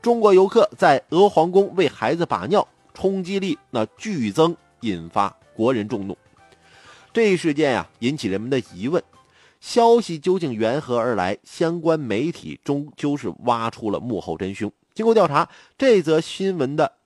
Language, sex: Chinese, male